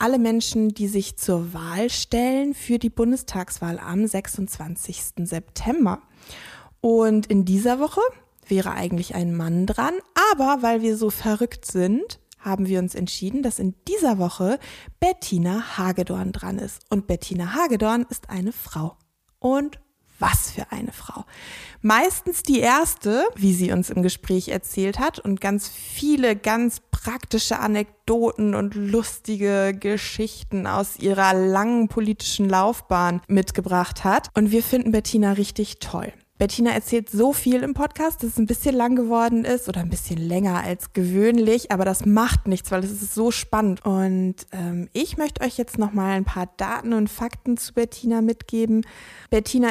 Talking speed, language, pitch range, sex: 155 wpm, German, 190-235 Hz, female